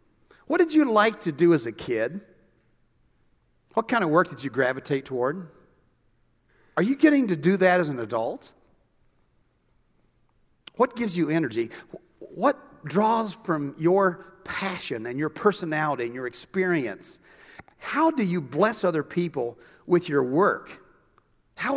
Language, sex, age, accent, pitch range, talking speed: English, male, 50-69, American, 155-215 Hz, 140 wpm